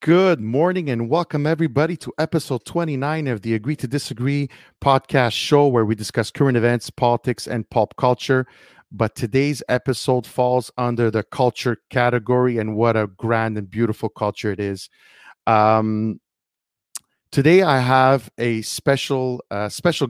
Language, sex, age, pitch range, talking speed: English, male, 40-59, 110-140 Hz, 145 wpm